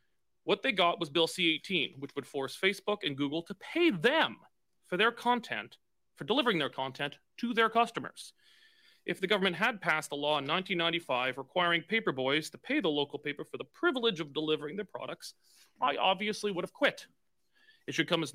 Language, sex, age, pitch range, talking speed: English, male, 30-49, 145-205 Hz, 185 wpm